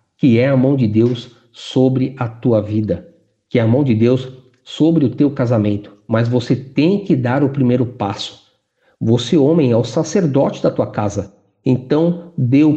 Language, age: Portuguese, 50-69